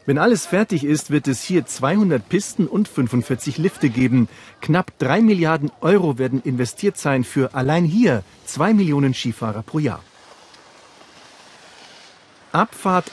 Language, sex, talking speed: German, male, 135 wpm